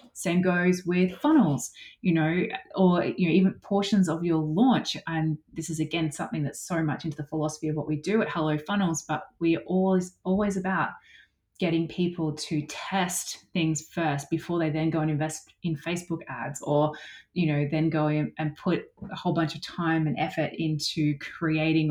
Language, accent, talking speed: English, Australian, 190 wpm